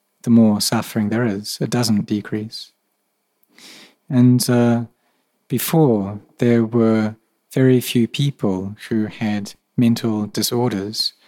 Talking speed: 105 wpm